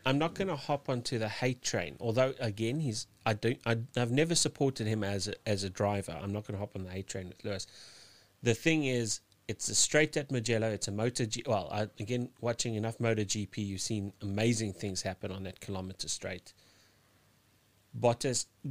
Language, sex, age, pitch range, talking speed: English, male, 30-49, 100-120 Hz, 205 wpm